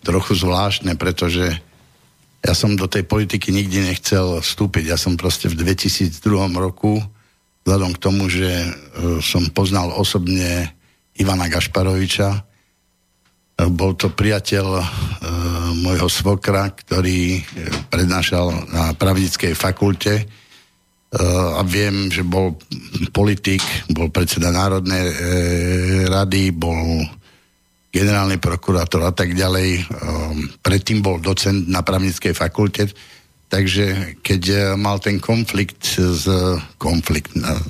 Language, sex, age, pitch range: Slovak, male, 60-79, 90-100 Hz